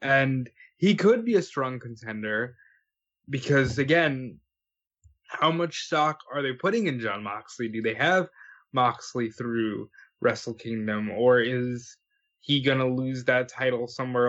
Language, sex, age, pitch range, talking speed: English, male, 20-39, 125-165 Hz, 140 wpm